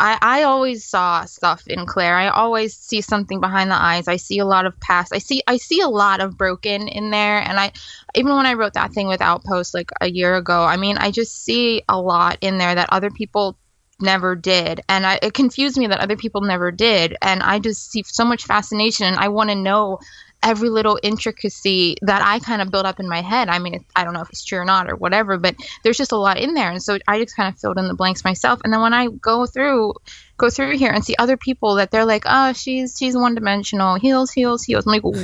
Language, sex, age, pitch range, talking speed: English, female, 20-39, 185-225 Hz, 250 wpm